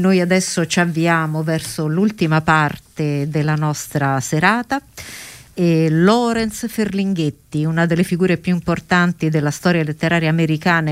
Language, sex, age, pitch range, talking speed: Italian, female, 50-69, 155-190 Hz, 120 wpm